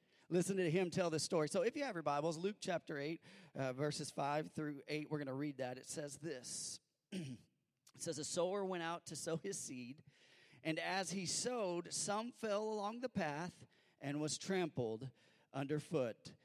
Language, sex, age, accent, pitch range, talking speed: English, male, 40-59, American, 145-200 Hz, 185 wpm